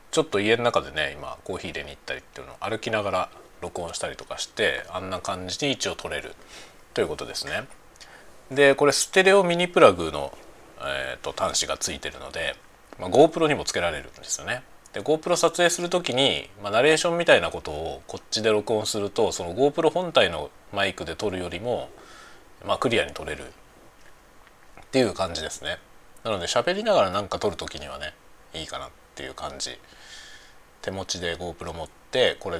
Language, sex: Japanese, male